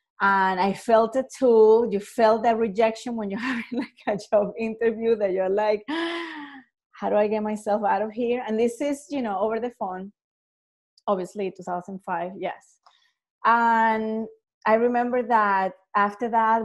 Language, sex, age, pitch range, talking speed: English, female, 30-49, 205-255 Hz, 155 wpm